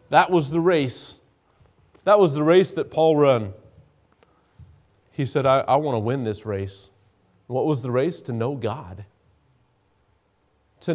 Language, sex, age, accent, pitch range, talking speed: English, male, 40-59, American, 100-135 Hz, 155 wpm